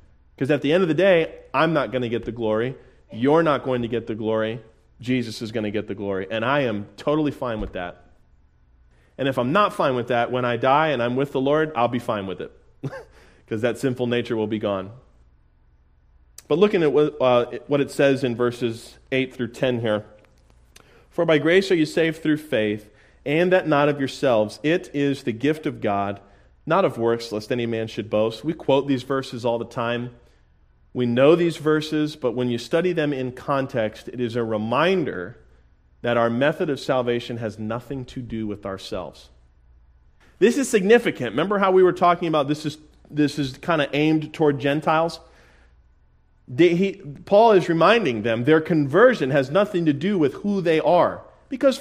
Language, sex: English, male